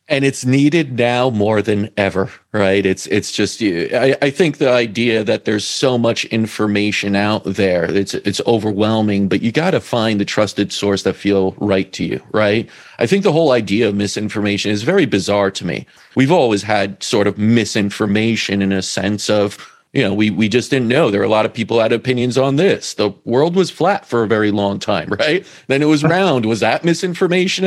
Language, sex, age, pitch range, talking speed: English, male, 40-59, 105-130 Hz, 210 wpm